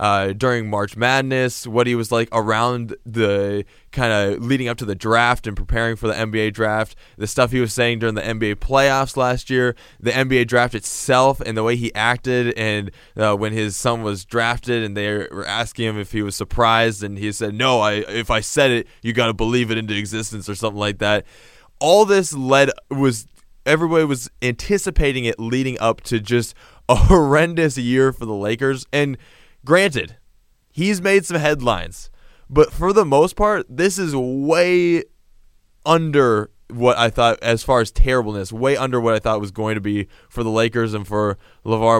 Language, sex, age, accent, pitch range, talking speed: English, male, 10-29, American, 105-125 Hz, 190 wpm